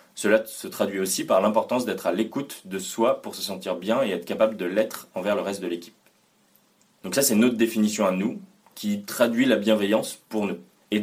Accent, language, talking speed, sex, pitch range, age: French, French, 210 wpm, male, 100-120 Hz, 20-39